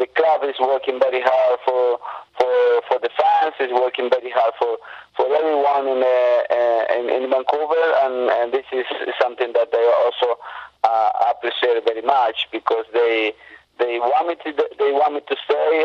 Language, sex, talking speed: English, male, 175 wpm